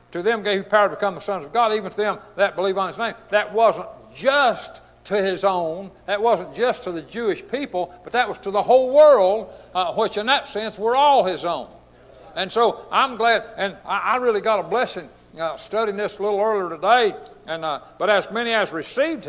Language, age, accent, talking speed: English, 60-79, American, 225 wpm